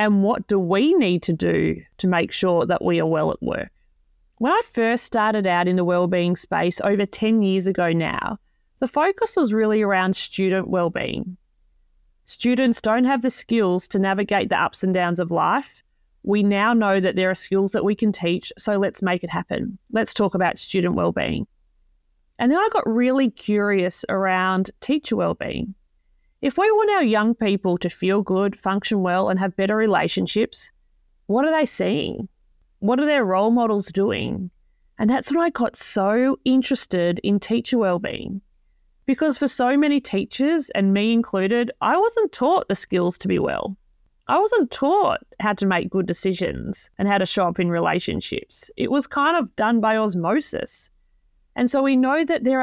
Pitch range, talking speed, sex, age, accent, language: 185-250 Hz, 180 wpm, female, 30-49, Australian, English